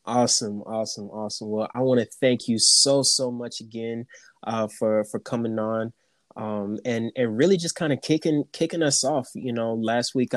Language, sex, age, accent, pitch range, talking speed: English, male, 20-39, American, 110-125 Hz, 190 wpm